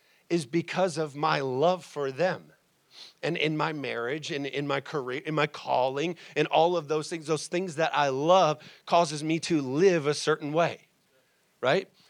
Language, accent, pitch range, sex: English, American, 145-170 Hz, male